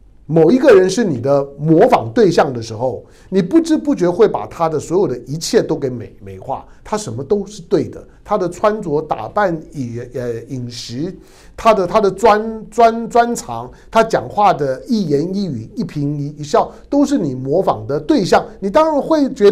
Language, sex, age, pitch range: Chinese, male, 50-69, 140-225 Hz